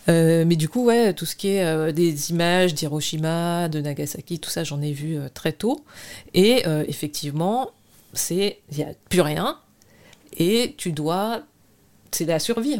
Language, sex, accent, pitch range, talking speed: French, female, French, 150-190 Hz, 175 wpm